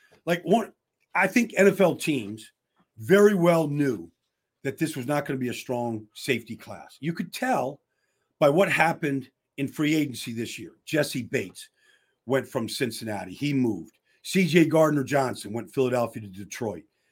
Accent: American